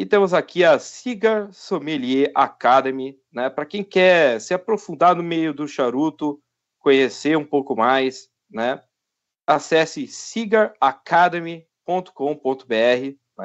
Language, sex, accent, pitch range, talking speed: Portuguese, male, Brazilian, 130-175 Hz, 105 wpm